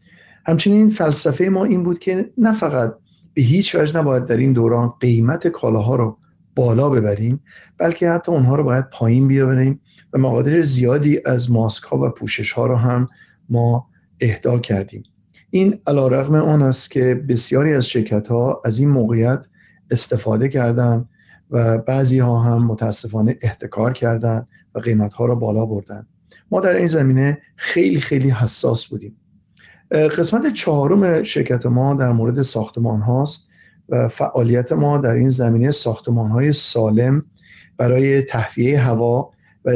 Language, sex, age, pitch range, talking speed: Persian, male, 50-69, 115-140 Hz, 145 wpm